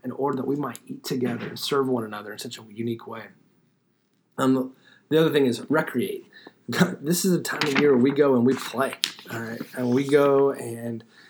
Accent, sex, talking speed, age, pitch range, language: American, male, 220 wpm, 30-49, 120-140 Hz, English